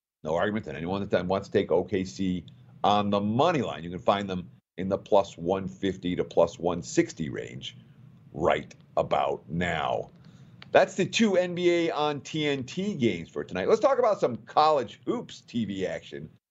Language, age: English, 50-69